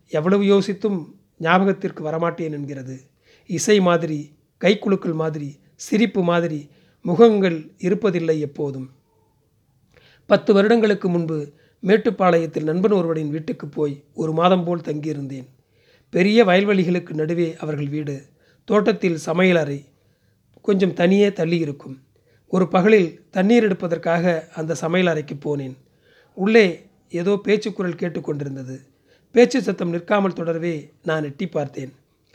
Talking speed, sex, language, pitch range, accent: 100 wpm, male, Tamil, 150-190 Hz, native